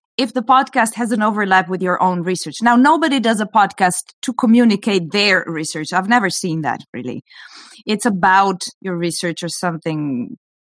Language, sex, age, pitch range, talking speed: English, female, 30-49, 180-245 Hz, 170 wpm